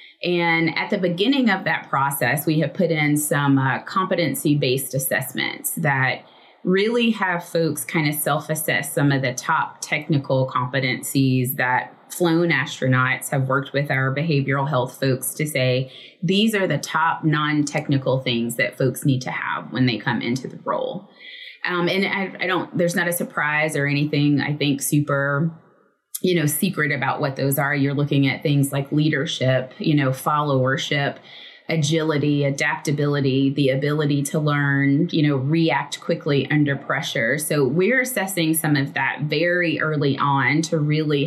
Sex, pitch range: female, 135-165 Hz